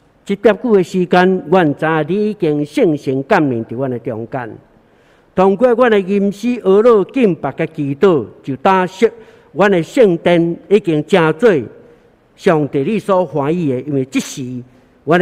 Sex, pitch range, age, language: male, 140-195 Hz, 60-79, Chinese